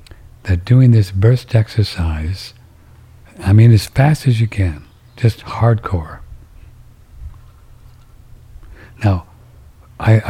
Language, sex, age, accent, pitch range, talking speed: English, male, 60-79, American, 95-115 Hz, 95 wpm